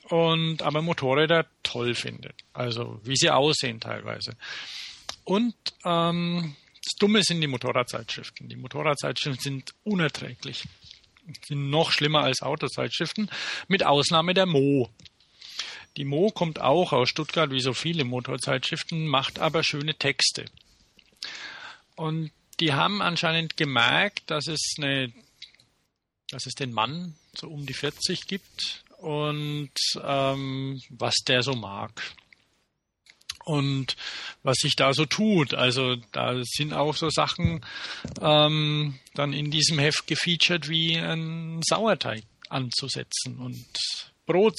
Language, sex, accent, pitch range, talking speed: German, male, German, 135-165 Hz, 125 wpm